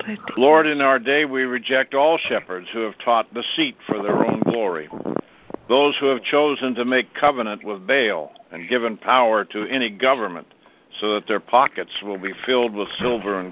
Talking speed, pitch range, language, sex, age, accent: 185 wpm, 115-140 Hz, English, male, 60-79, American